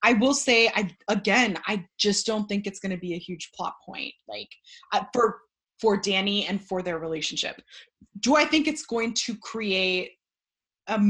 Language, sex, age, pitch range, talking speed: English, female, 20-39, 180-240 Hz, 185 wpm